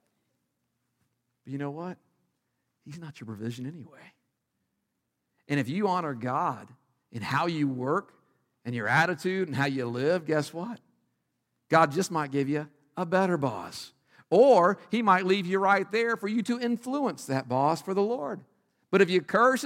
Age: 50-69